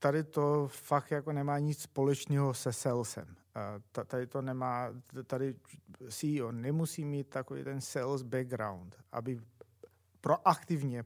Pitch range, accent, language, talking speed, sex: 125-155 Hz, native, Czech, 110 wpm, male